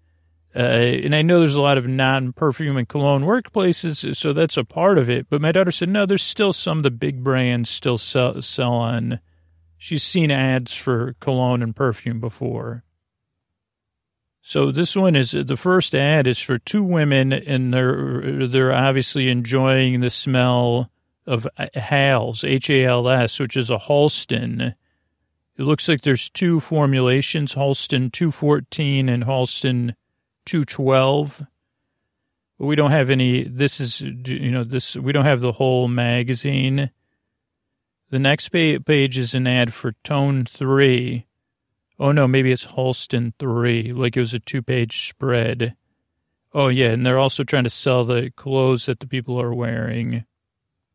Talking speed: 155 wpm